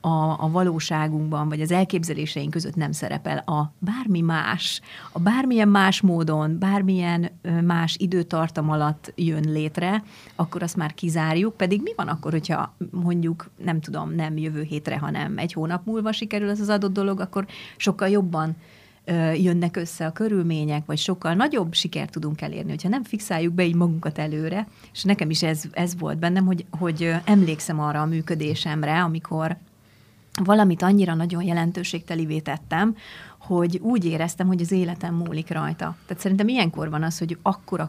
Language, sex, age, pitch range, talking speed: Hungarian, female, 30-49, 160-190 Hz, 160 wpm